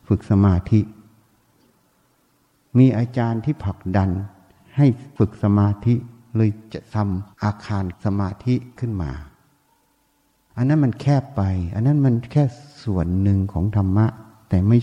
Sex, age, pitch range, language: male, 60-79, 95-125 Hz, Thai